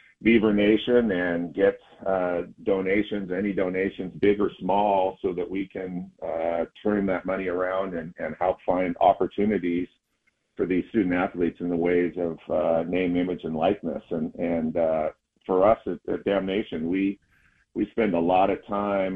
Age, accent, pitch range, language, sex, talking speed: 50-69, American, 85-100 Hz, English, male, 165 wpm